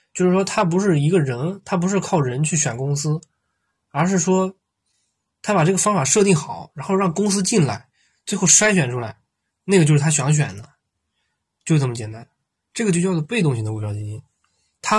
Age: 20-39